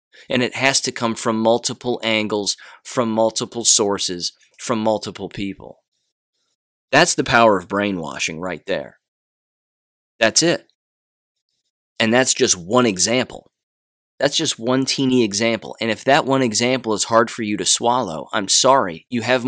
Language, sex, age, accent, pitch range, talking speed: English, male, 30-49, American, 105-130 Hz, 150 wpm